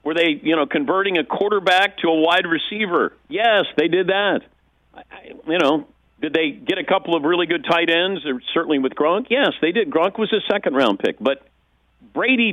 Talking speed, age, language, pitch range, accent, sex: 195 wpm, 50-69, English, 140-210 Hz, American, male